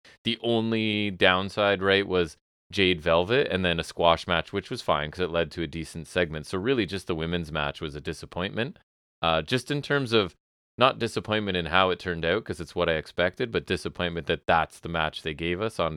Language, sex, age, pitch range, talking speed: English, male, 30-49, 80-100 Hz, 220 wpm